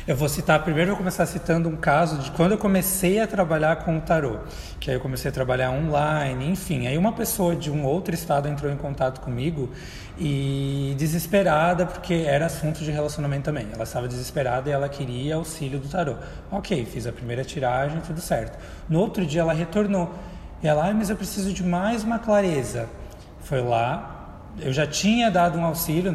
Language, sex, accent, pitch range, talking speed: Portuguese, male, Brazilian, 140-180 Hz, 195 wpm